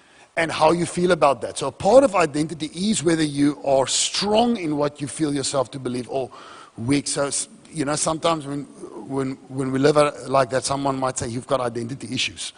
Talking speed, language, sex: 200 wpm, English, male